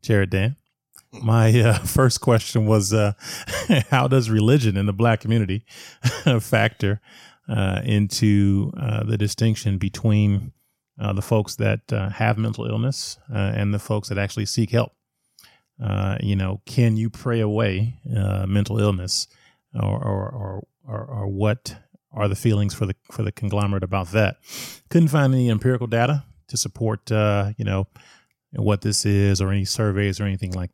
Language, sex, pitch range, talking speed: English, male, 100-120 Hz, 160 wpm